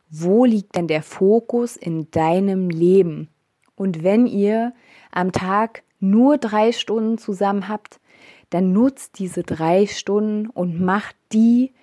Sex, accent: female, German